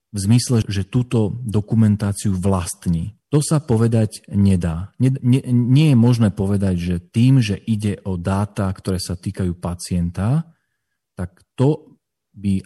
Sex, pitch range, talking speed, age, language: male, 90-110 Hz, 140 wpm, 40-59, Slovak